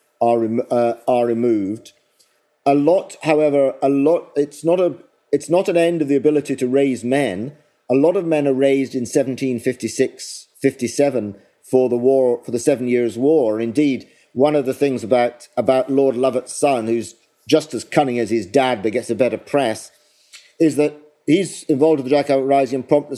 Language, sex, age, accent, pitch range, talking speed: English, male, 50-69, British, 125-160 Hz, 185 wpm